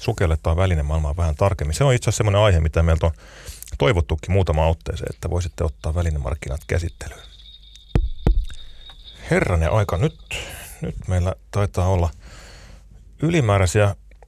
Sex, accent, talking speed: male, native, 120 wpm